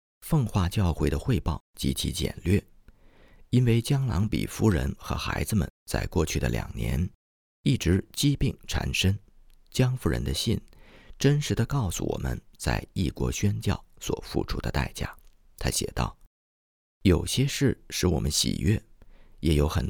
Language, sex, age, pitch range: Chinese, male, 50-69, 70-105 Hz